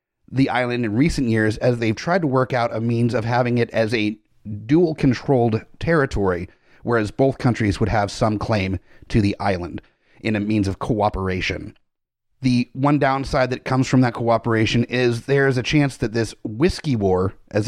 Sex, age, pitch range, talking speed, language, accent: male, 30-49, 110-140 Hz, 180 wpm, English, American